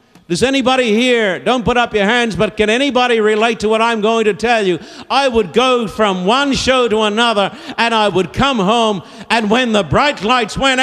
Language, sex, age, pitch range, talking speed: English, male, 60-79, 215-255 Hz, 210 wpm